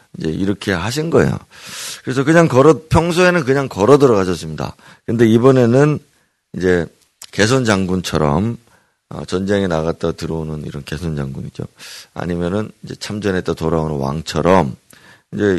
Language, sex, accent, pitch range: Korean, male, native, 85-115 Hz